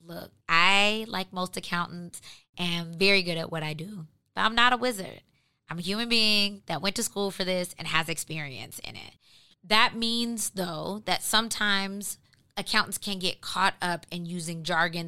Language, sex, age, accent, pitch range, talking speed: English, female, 20-39, American, 170-225 Hz, 180 wpm